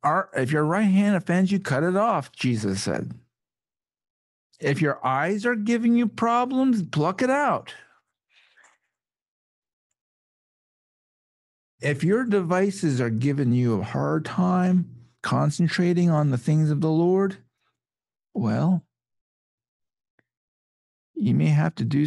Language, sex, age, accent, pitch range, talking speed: English, male, 50-69, American, 115-170 Hz, 115 wpm